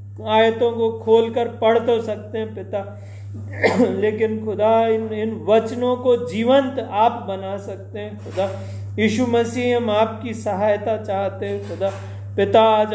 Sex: male